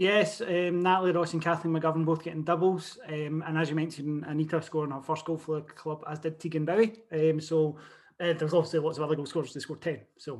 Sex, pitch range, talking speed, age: male, 160-190 Hz, 230 wpm, 20-39